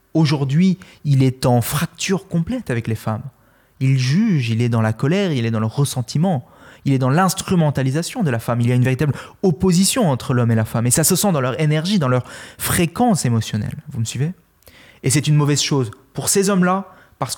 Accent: French